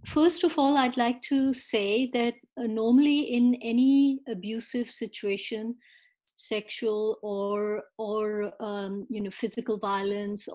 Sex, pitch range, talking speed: female, 210-250 Hz, 125 wpm